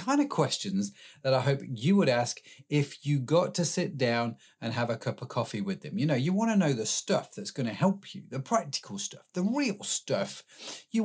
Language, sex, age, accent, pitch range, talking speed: English, male, 30-49, British, 125-180 Hz, 235 wpm